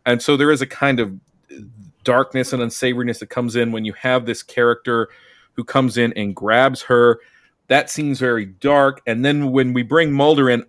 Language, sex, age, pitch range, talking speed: English, male, 40-59, 120-145 Hz, 195 wpm